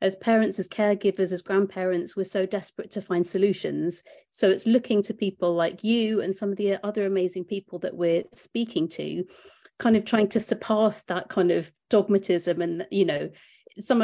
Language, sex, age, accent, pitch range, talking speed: English, female, 40-59, British, 175-215 Hz, 185 wpm